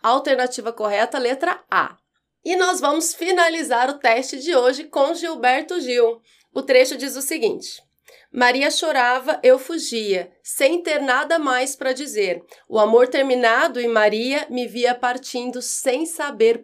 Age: 30-49